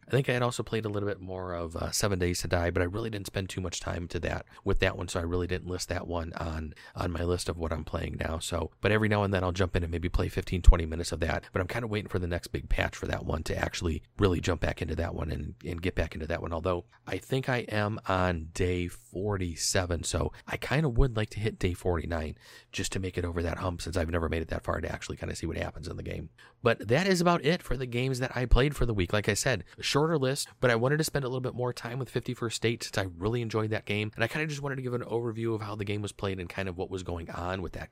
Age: 30-49